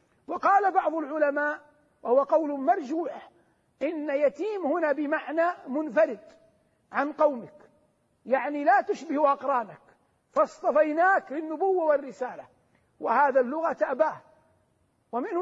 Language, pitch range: Arabic, 270-325 Hz